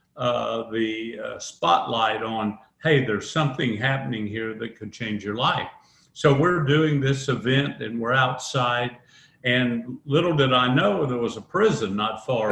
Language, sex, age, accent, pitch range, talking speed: English, male, 50-69, American, 120-145 Hz, 165 wpm